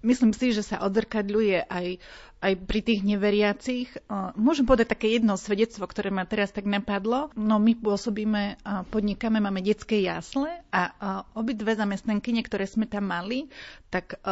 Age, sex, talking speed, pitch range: 30-49, female, 150 wpm, 200-225 Hz